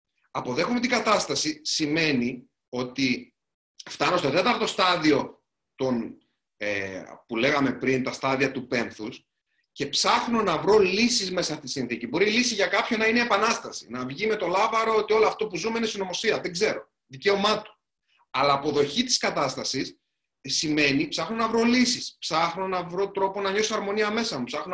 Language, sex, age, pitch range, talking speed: Greek, male, 30-49, 145-225 Hz, 170 wpm